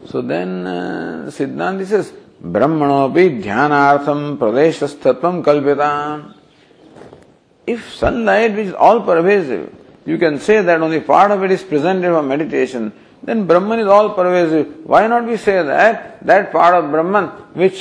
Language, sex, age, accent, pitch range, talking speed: English, male, 50-69, Indian, 110-185 Hz, 130 wpm